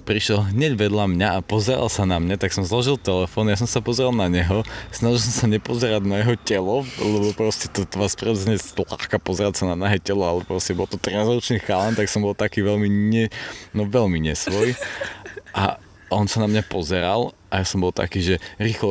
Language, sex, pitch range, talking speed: Slovak, male, 95-110 Hz, 205 wpm